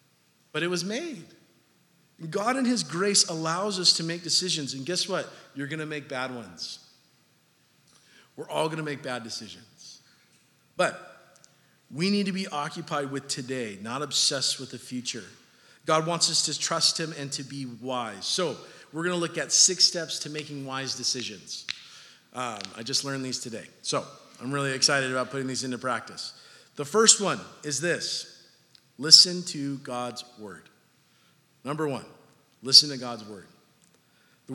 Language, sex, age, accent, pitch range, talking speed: English, male, 40-59, American, 130-170 Hz, 165 wpm